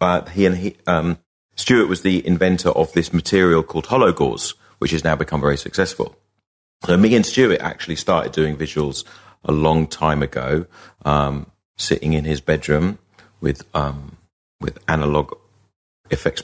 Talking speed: 160 wpm